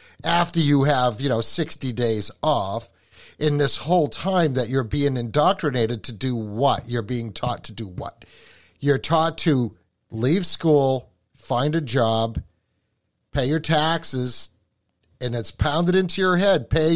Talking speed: 150 wpm